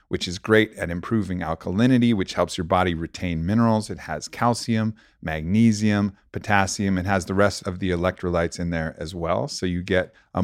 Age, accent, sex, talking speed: 30-49, American, male, 185 wpm